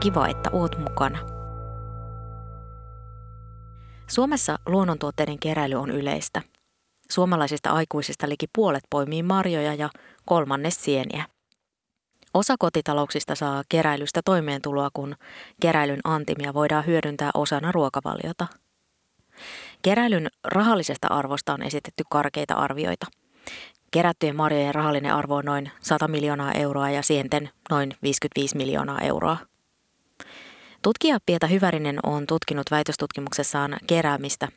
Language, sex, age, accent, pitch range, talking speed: Finnish, female, 20-39, native, 140-165 Hz, 100 wpm